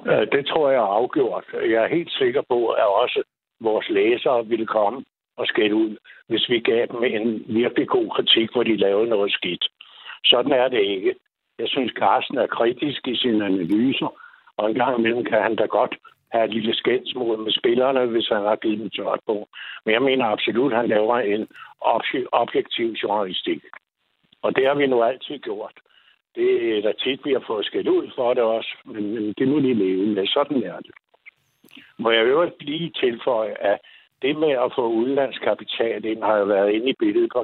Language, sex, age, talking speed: Danish, male, 60-79, 195 wpm